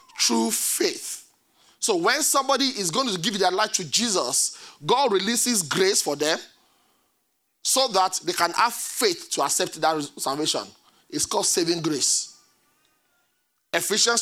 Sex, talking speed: male, 140 wpm